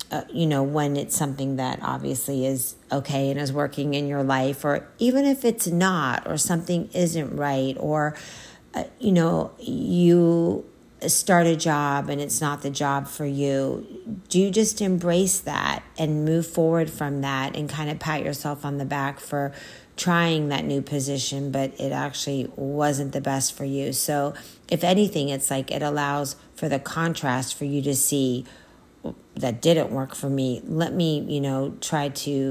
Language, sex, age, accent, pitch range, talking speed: English, female, 40-59, American, 135-160 Hz, 175 wpm